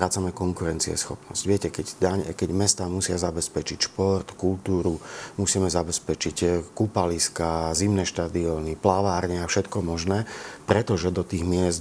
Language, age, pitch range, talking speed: Slovak, 40-59, 85-95 Hz, 125 wpm